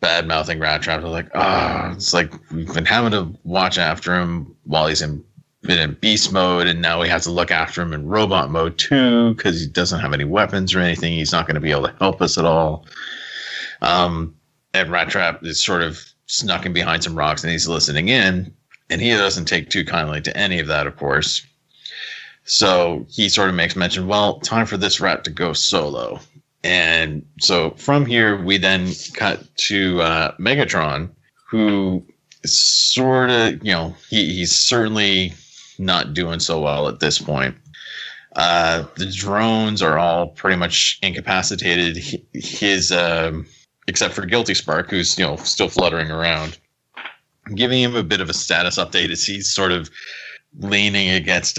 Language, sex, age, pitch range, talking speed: English, male, 30-49, 80-100 Hz, 180 wpm